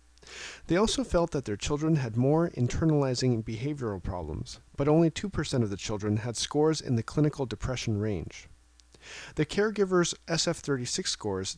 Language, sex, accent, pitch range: English, male, American, 100-150 Hz